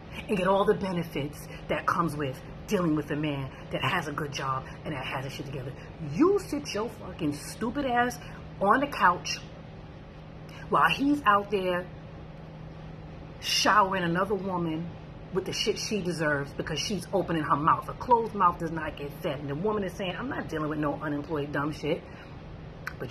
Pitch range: 155-205 Hz